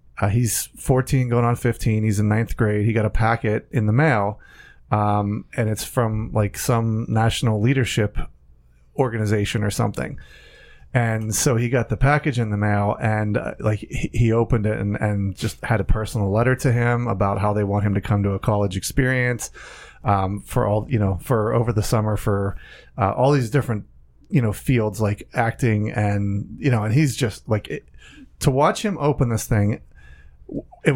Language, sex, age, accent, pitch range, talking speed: English, male, 30-49, American, 105-125 Hz, 190 wpm